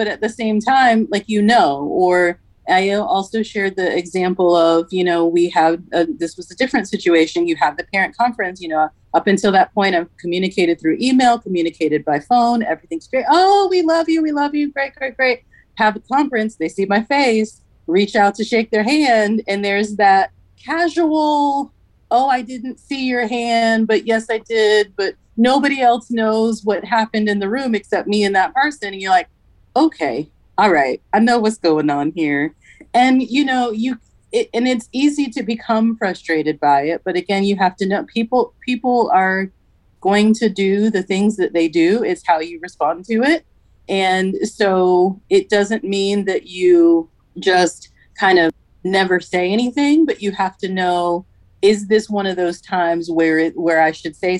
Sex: female